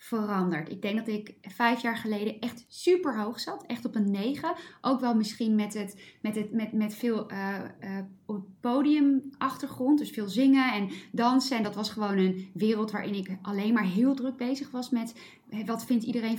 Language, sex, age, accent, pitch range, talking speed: Dutch, female, 20-39, Dutch, 210-255 Hz, 190 wpm